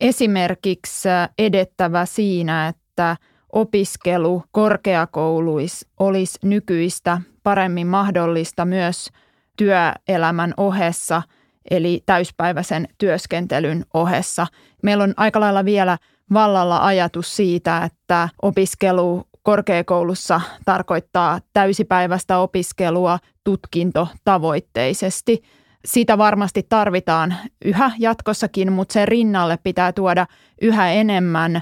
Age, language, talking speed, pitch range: 20-39, Finnish, 85 wpm, 170-200 Hz